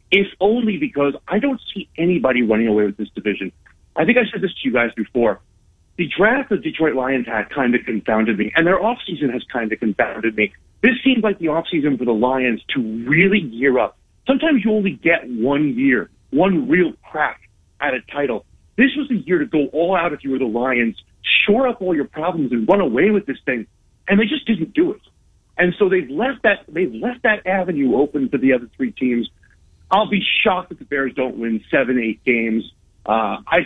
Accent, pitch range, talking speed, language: American, 115-185 Hz, 215 wpm, English